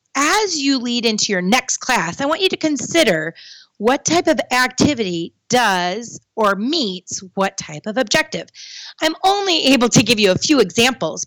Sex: female